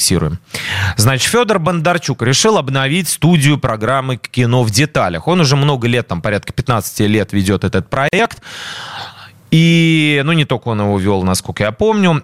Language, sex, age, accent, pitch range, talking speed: Russian, male, 30-49, native, 125-165 Hz, 150 wpm